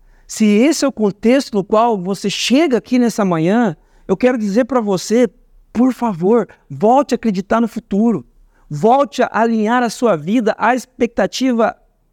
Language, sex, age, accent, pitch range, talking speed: Portuguese, male, 50-69, Brazilian, 215-260 Hz, 160 wpm